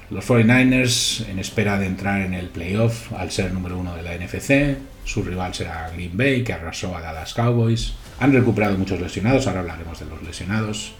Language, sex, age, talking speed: Spanish, male, 40-59, 190 wpm